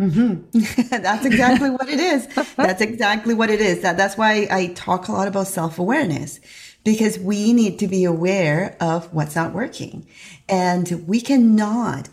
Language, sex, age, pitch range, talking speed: English, female, 40-59, 175-230 Hz, 165 wpm